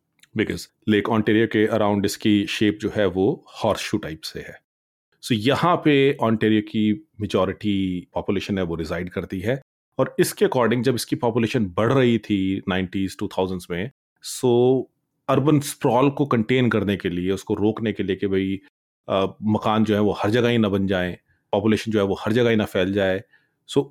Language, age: Punjabi, 30-49